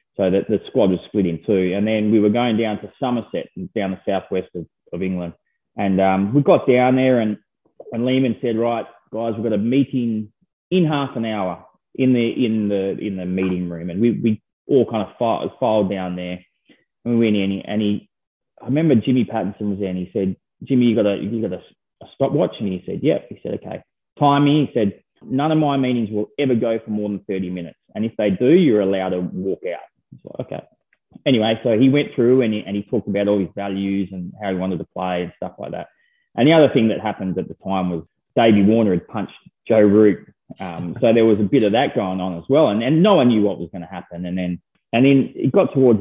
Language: English